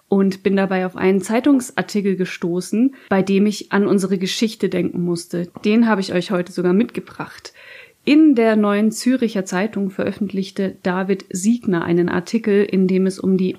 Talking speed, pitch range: 165 wpm, 180-210 Hz